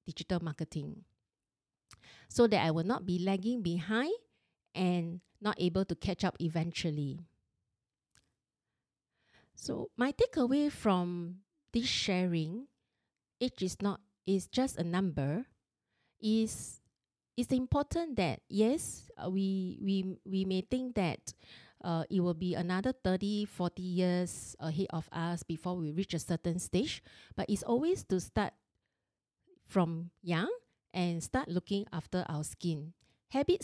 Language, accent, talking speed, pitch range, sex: English, Malaysian, 130 wpm, 170-210 Hz, female